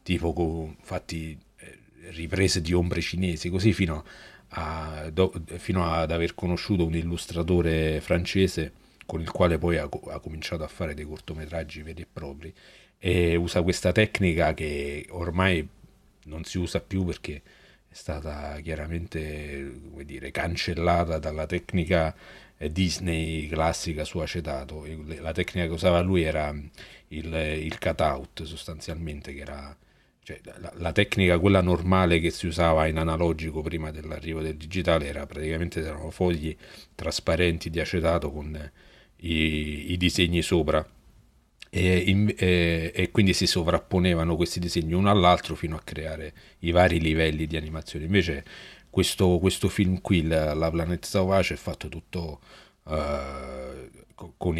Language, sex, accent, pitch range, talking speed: Italian, male, native, 80-90 Hz, 135 wpm